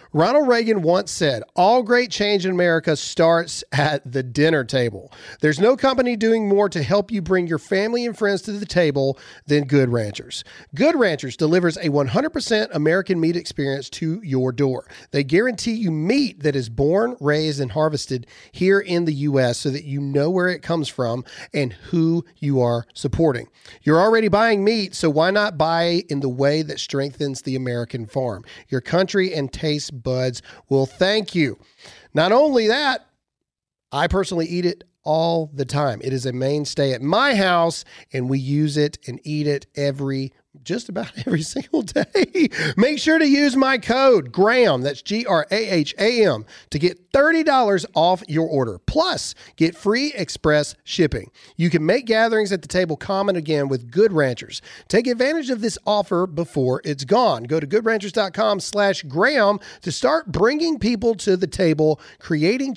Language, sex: English, male